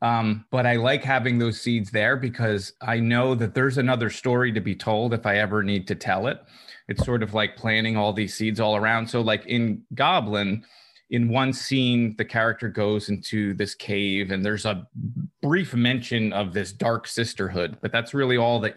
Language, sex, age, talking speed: English, male, 30-49, 200 wpm